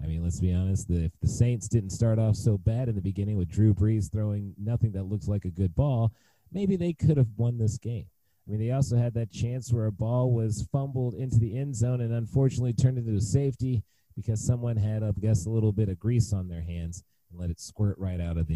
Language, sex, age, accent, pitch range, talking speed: English, male, 30-49, American, 105-140 Hz, 250 wpm